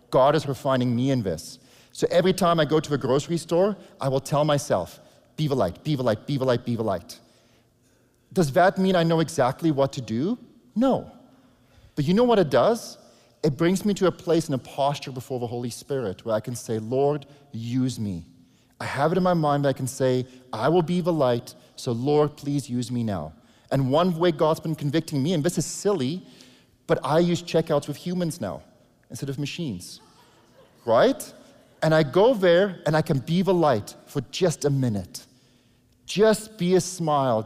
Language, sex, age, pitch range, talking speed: English, male, 30-49, 125-170 Hz, 205 wpm